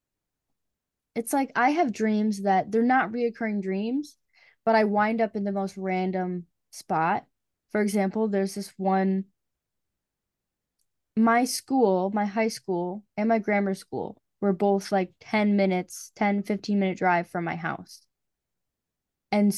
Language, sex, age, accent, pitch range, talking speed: English, female, 10-29, American, 185-220 Hz, 140 wpm